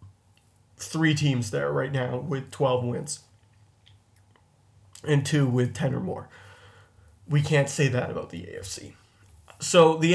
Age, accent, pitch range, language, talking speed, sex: 30-49, American, 120-145 Hz, English, 135 wpm, male